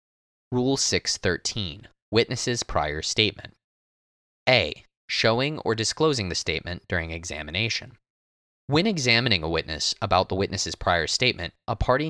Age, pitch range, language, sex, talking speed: 20-39, 85-115 Hz, English, male, 120 wpm